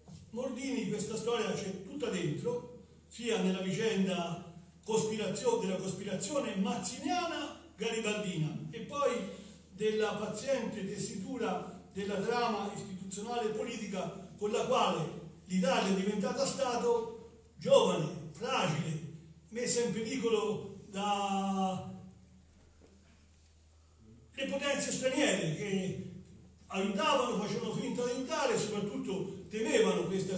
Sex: male